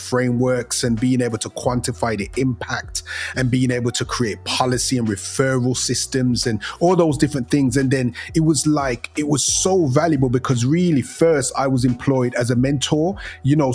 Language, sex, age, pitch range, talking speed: English, male, 30-49, 125-150 Hz, 185 wpm